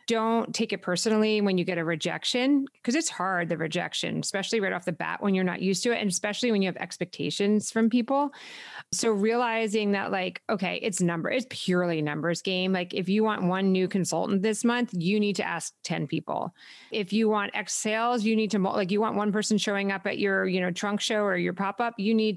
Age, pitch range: 30-49, 180-220 Hz